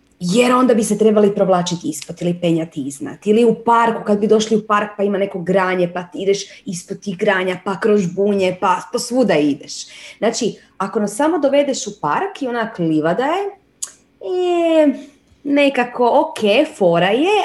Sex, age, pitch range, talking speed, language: female, 20-39, 165-245 Hz, 180 wpm, Croatian